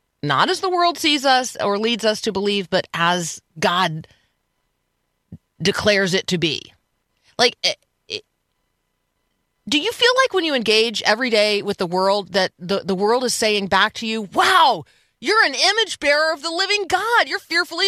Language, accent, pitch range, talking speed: English, American, 190-295 Hz, 170 wpm